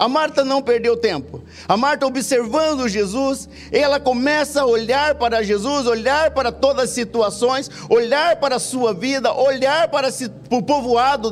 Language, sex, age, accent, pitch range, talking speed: Portuguese, male, 50-69, Brazilian, 190-260 Hz, 155 wpm